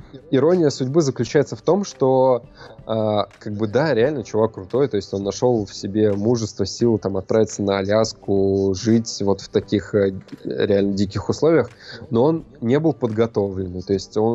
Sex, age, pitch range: male, 20-39, 100-125 Hz